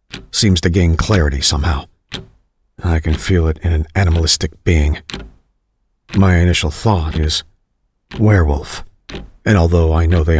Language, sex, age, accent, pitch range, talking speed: English, male, 50-69, American, 80-95 Hz, 135 wpm